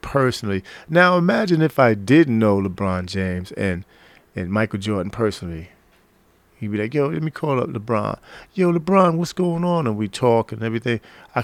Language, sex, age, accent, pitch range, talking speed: English, male, 40-59, American, 110-160 Hz, 180 wpm